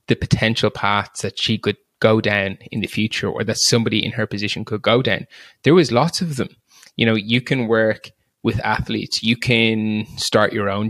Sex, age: male, 20-39